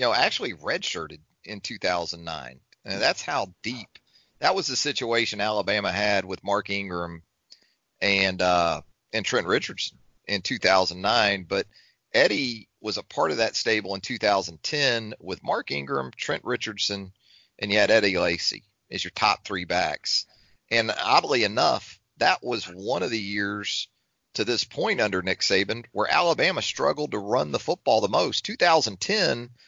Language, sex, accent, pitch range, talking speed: English, male, American, 95-105 Hz, 155 wpm